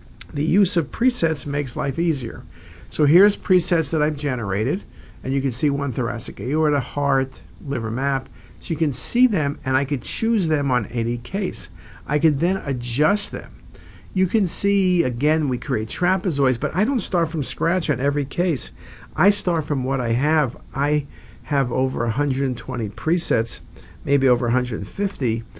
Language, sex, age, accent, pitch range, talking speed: English, male, 50-69, American, 125-160 Hz, 165 wpm